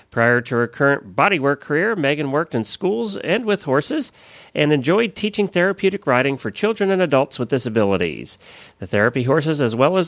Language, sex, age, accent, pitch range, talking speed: English, male, 40-59, American, 125-195 Hz, 180 wpm